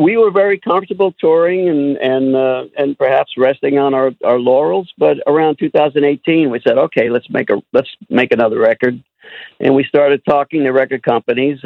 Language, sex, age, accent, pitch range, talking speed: English, male, 50-69, American, 125-145 Hz, 180 wpm